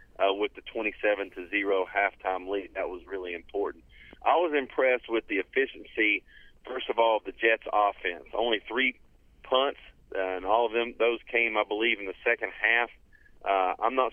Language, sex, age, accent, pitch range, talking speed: English, male, 40-59, American, 100-125 Hz, 185 wpm